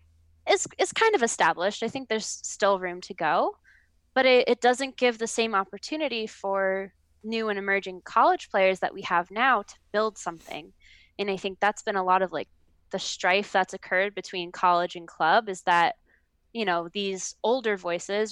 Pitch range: 180-210 Hz